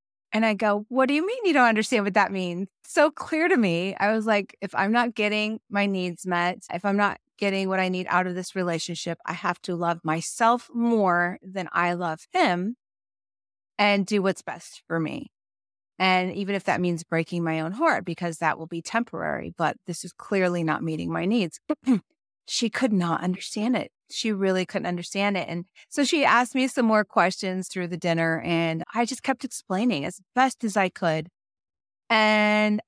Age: 30-49